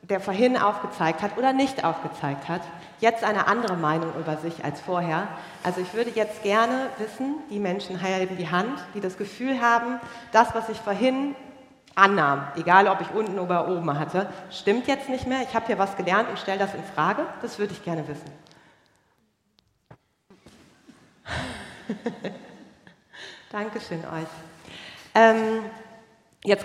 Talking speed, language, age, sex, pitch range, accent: 150 wpm, English, 40-59, female, 180-230 Hz, German